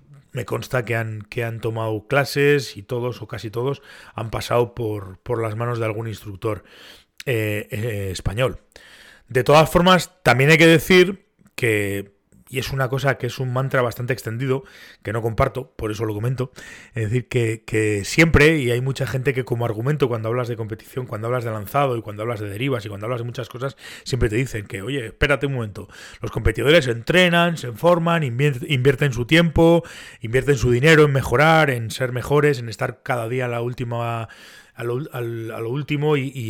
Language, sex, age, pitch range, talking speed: Spanish, male, 30-49, 115-135 Hz, 185 wpm